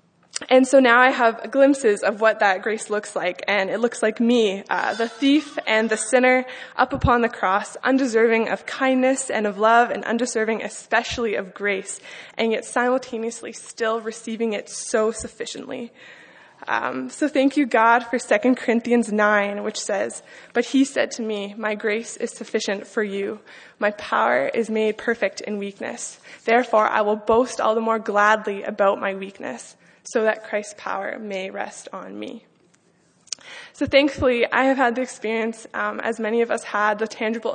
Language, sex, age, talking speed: English, female, 20-39, 175 wpm